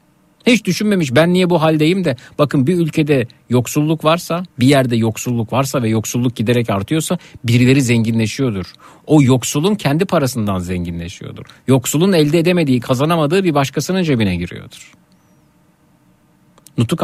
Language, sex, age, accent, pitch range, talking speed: Turkish, male, 50-69, native, 125-155 Hz, 125 wpm